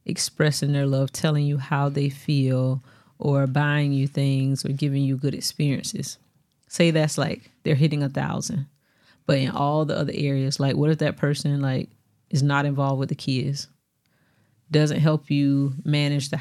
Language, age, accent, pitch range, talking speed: English, 30-49, American, 140-155 Hz, 170 wpm